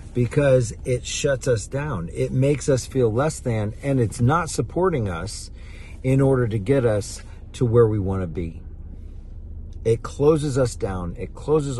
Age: 50-69